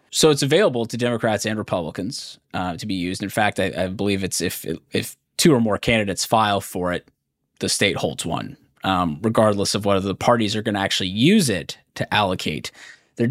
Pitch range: 100-120 Hz